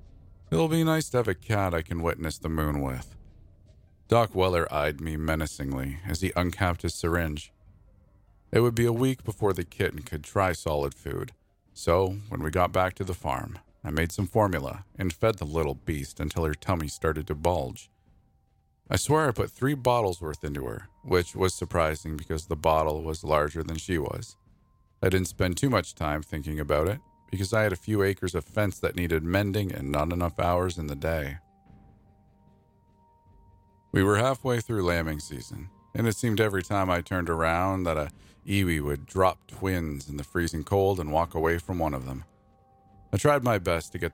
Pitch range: 80-100 Hz